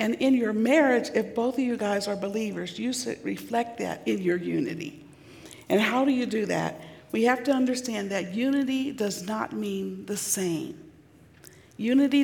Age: 60-79